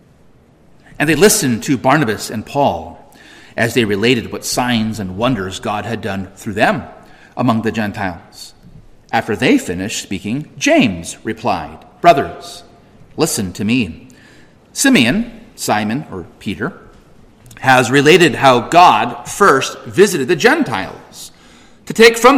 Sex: male